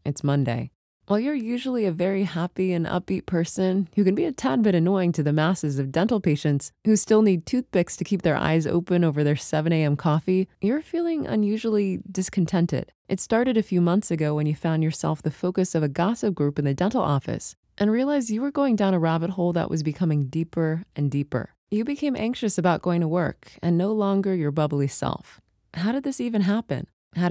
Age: 20-39